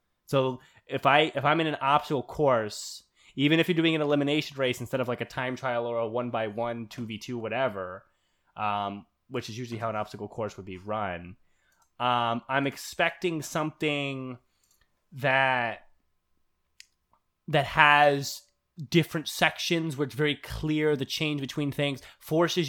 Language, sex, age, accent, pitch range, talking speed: English, male, 20-39, American, 125-155 Hz, 160 wpm